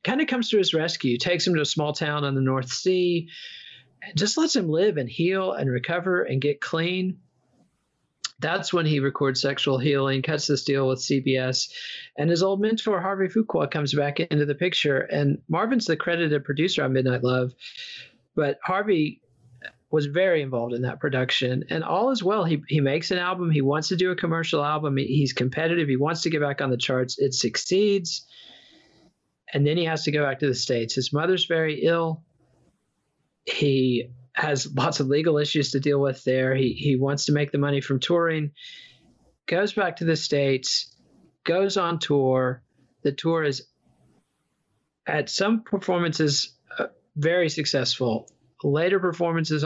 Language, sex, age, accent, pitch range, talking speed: English, male, 40-59, American, 135-170 Hz, 175 wpm